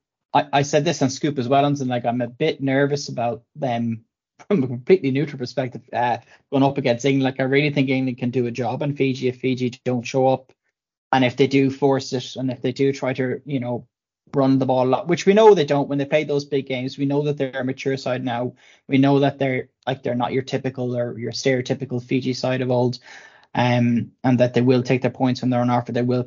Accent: Irish